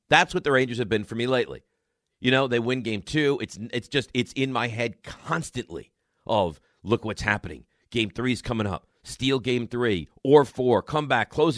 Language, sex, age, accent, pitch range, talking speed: English, male, 50-69, American, 110-145 Hz, 205 wpm